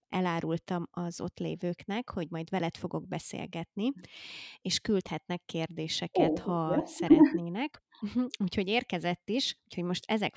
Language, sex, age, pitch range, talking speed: Hungarian, female, 20-39, 175-205 Hz, 115 wpm